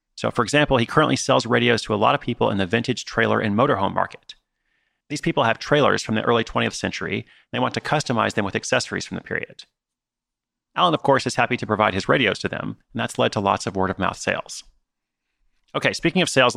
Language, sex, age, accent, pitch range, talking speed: English, male, 30-49, American, 110-135 Hz, 230 wpm